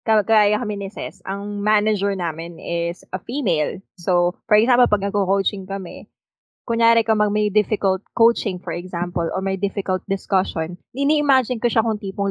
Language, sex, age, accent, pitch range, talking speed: Filipino, female, 20-39, native, 180-215 Hz, 145 wpm